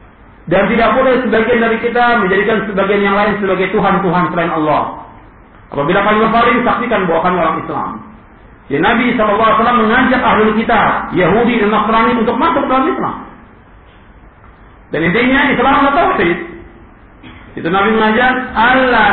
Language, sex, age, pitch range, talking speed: Indonesian, male, 50-69, 195-240 Hz, 135 wpm